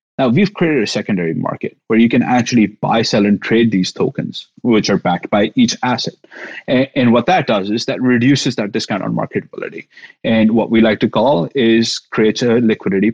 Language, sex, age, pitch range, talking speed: English, male, 30-49, 110-135 Hz, 200 wpm